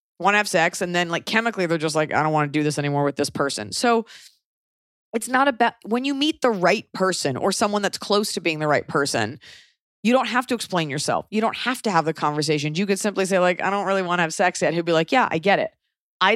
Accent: American